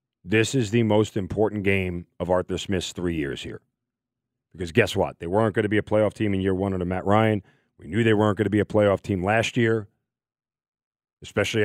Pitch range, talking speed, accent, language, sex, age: 95-115 Hz, 215 wpm, American, English, male, 40-59